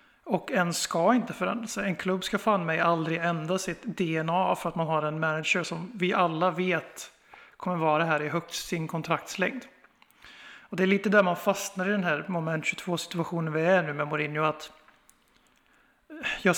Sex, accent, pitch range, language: male, native, 165-195 Hz, Swedish